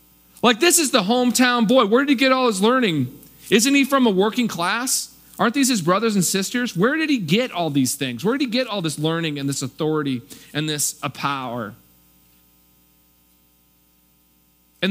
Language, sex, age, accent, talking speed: English, male, 40-59, American, 190 wpm